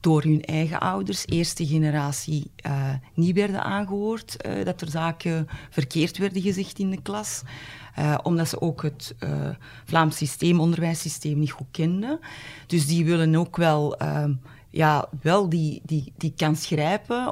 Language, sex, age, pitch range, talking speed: Dutch, female, 40-59, 145-165 Hz, 155 wpm